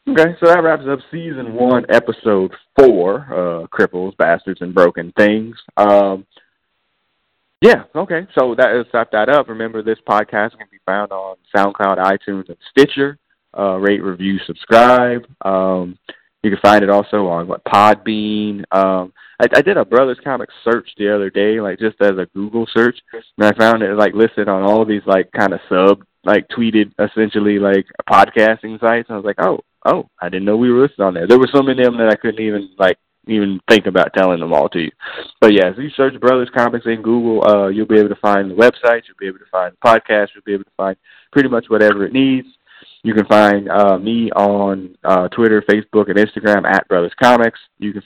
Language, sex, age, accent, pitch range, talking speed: English, male, 20-39, American, 95-115 Hz, 210 wpm